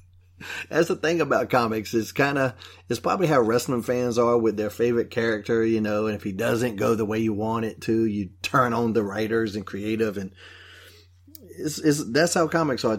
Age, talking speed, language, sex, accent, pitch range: 30-49, 200 wpm, English, male, American, 95-130 Hz